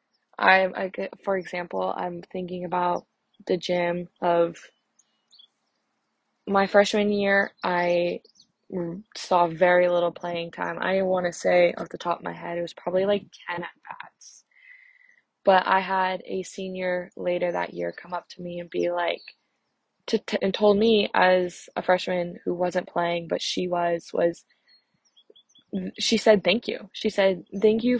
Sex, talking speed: female, 155 wpm